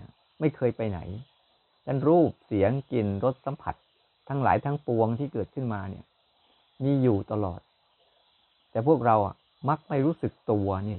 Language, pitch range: Thai, 110-145 Hz